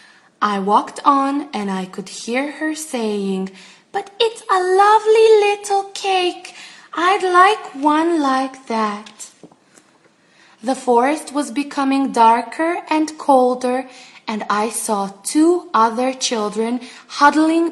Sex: female